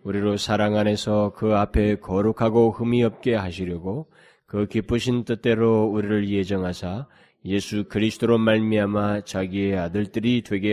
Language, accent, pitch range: Korean, native, 100-145 Hz